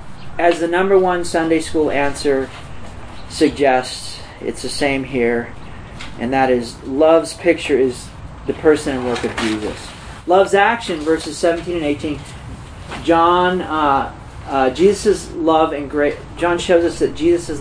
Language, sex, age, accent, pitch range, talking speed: English, male, 40-59, American, 120-165 Hz, 145 wpm